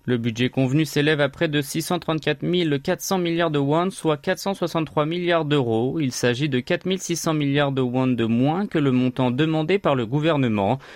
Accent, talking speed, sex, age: French, 180 wpm, male, 30-49